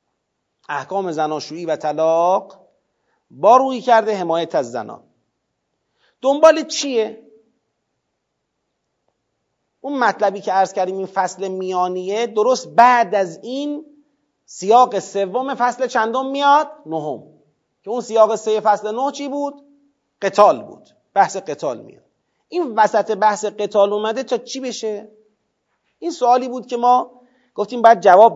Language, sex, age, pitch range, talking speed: Persian, male, 40-59, 190-250 Hz, 125 wpm